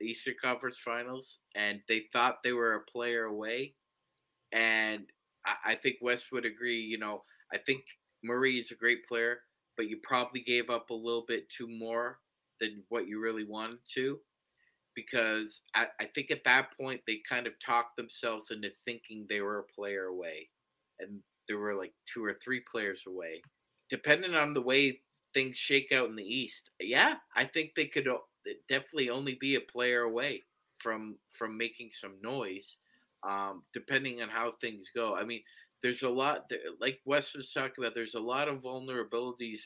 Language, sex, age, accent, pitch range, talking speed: English, male, 30-49, American, 110-130 Hz, 180 wpm